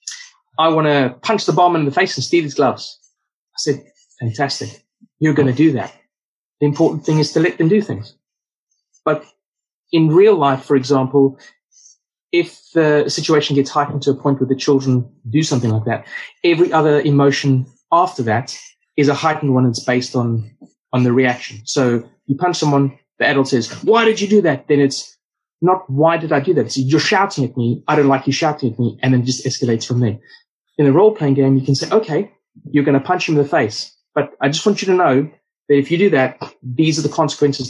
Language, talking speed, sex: English, 215 wpm, male